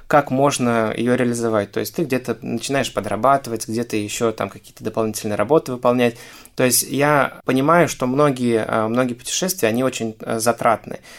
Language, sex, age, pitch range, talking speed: Russian, male, 20-39, 115-130 Hz, 150 wpm